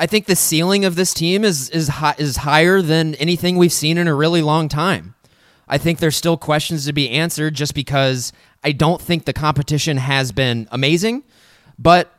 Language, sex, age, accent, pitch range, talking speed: English, male, 20-39, American, 135-170 Hz, 190 wpm